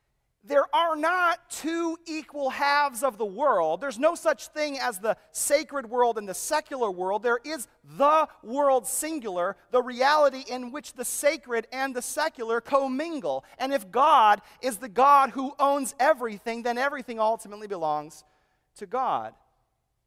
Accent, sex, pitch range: American, male, 195-280 Hz